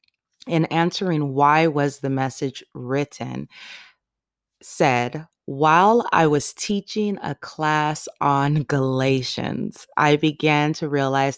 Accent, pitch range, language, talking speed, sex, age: American, 130-155 Hz, English, 105 wpm, female, 20-39